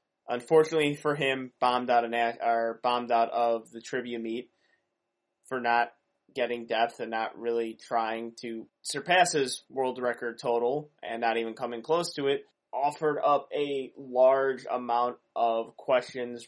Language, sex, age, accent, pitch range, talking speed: English, male, 20-39, American, 115-140 Hz, 135 wpm